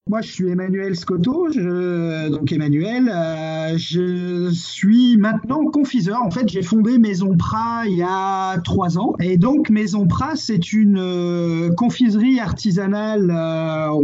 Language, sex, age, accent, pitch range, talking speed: French, male, 30-49, French, 170-220 Hz, 140 wpm